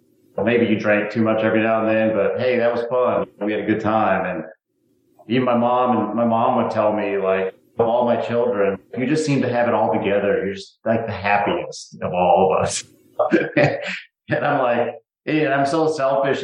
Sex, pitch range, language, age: male, 100-120 Hz, English, 40-59